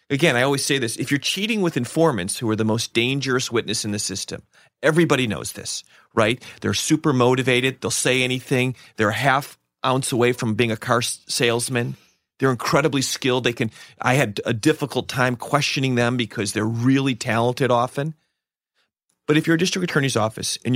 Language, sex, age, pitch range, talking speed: English, male, 40-59, 115-140 Hz, 185 wpm